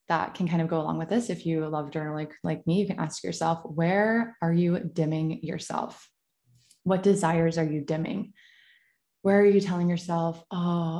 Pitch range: 160-200 Hz